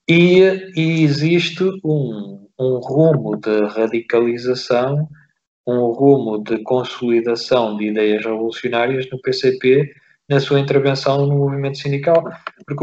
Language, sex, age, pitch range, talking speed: Portuguese, male, 20-39, 110-135 Hz, 110 wpm